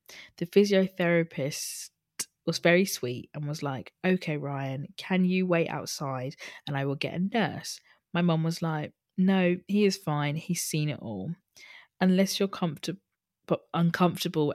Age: 20-39